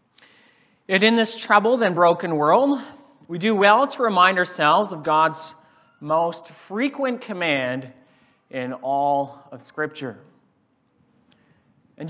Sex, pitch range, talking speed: male, 155-195 Hz, 115 wpm